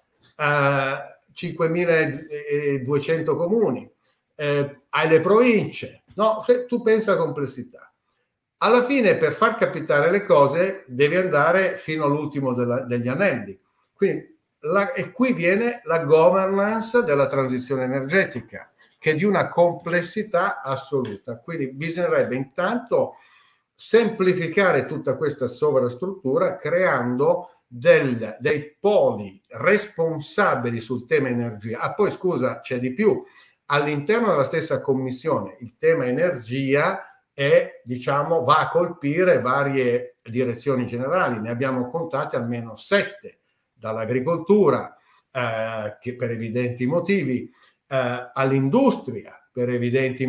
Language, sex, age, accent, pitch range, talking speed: Italian, male, 60-79, native, 125-185 Hz, 110 wpm